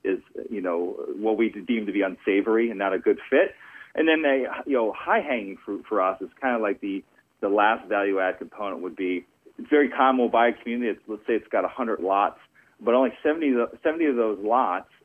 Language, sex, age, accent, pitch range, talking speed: English, male, 40-59, American, 95-125 Hz, 215 wpm